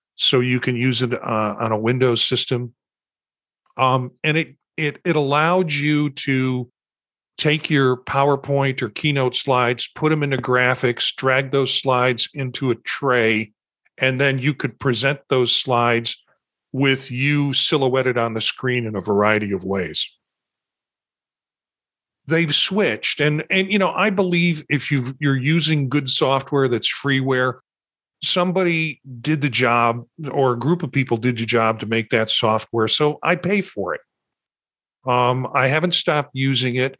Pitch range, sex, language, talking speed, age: 120-140 Hz, male, English, 155 wpm, 50-69